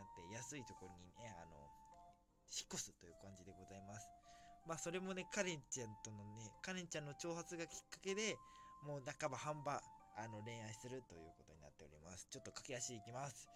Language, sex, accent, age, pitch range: Japanese, male, native, 20-39, 115-170 Hz